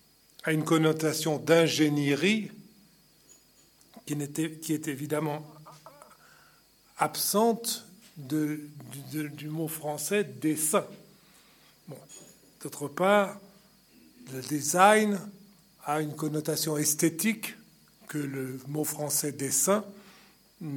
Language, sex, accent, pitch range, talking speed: French, male, French, 150-195 Hz, 70 wpm